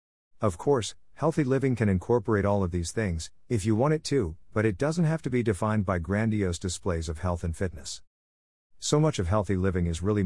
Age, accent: 50-69, American